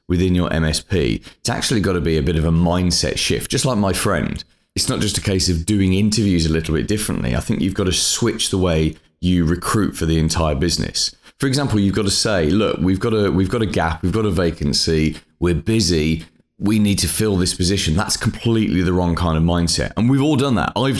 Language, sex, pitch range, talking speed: English, male, 85-110 Hz, 235 wpm